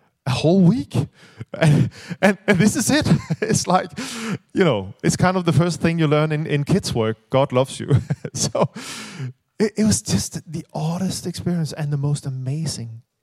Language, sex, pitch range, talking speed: English, male, 130-170 Hz, 180 wpm